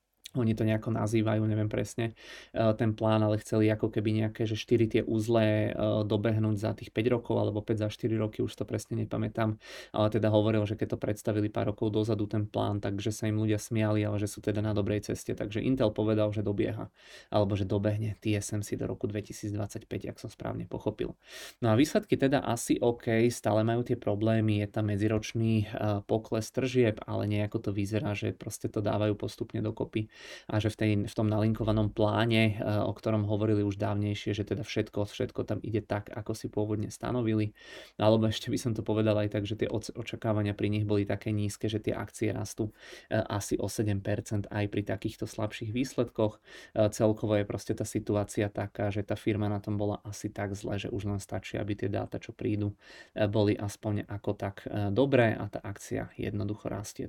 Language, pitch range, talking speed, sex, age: Czech, 105-110 Hz, 190 wpm, male, 20-39